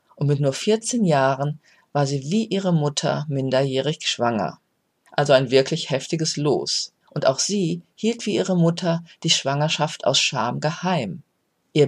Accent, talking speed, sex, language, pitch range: German, 150 wpm, female, German, 140-180 Hz